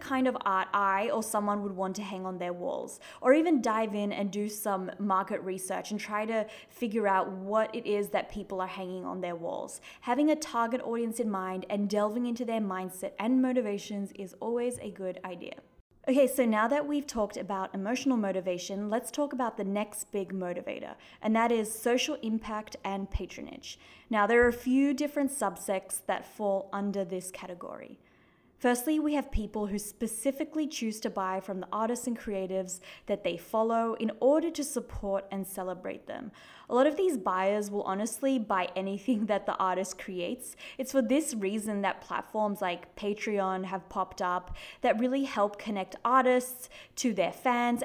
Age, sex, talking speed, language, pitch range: 20-39, female, 185 wpm, English, 195-245 Hz